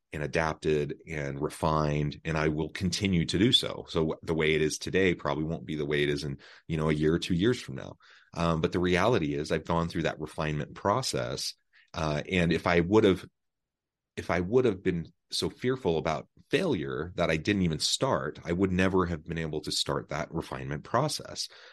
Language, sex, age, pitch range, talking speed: English, male, 30-49, 75-95 Hz, 210 wpm